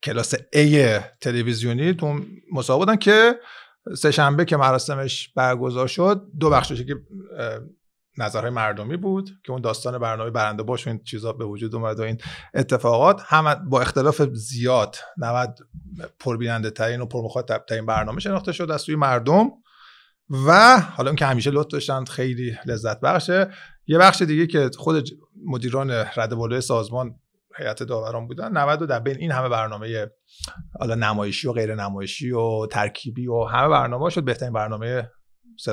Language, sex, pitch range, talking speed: Persian, male, 120-165 Hz, 155 wpm